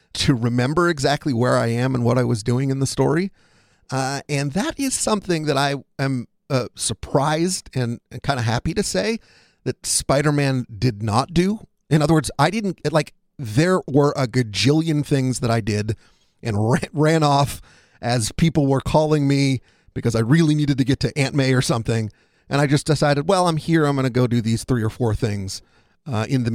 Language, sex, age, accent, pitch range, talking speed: English, male, 40-59, American, 120-155 Hz, 200 wpm